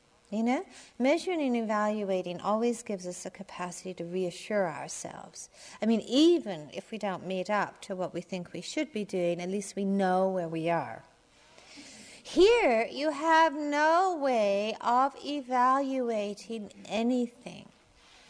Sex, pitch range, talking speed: female, 200-270 Hz, 145 wpm